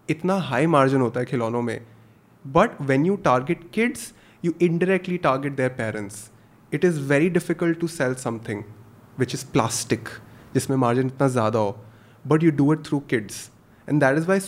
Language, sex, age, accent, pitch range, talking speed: Hindi, male, 20-39, native, 125-165 Hz, 175 wpm